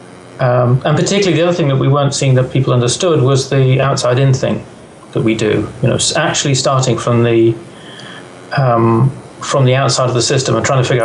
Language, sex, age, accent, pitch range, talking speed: English, male, 40-59, British, 120-140 Hz, 205 wpm